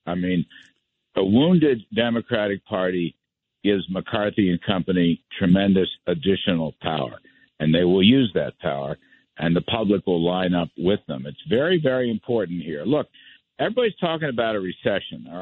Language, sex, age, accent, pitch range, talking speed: English, male, 60-79, American, 90-120 Hz, 150 wpm